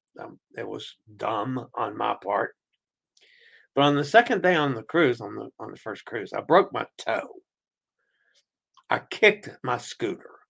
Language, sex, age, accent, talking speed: English, male, 60-79, American, 165 wpm